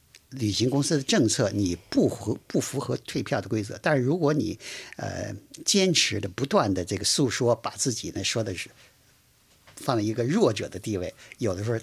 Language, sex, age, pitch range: Chinese, male, 50-69, 105-135 Hz